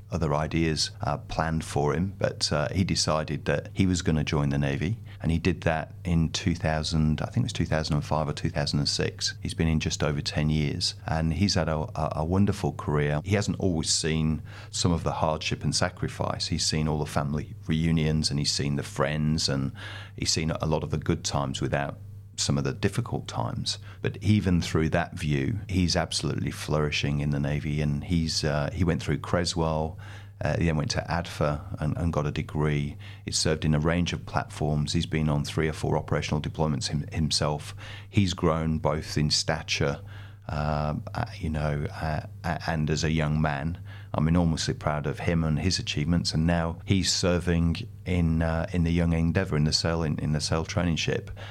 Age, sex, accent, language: 40-59, male, British, English